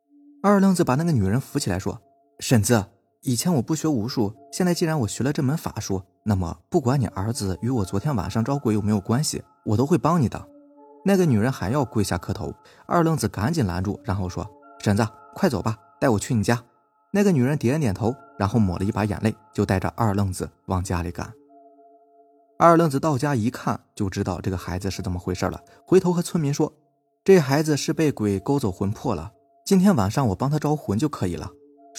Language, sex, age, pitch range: Chinese, male, 20-39, 100-150 Hz